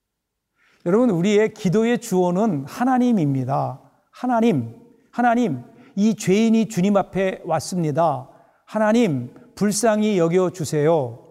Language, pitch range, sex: Korean, 170-220 Hz, male